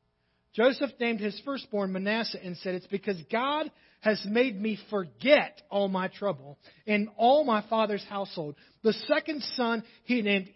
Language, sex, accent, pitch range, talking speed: English, male, American, 215-305 Hz, 155 wpm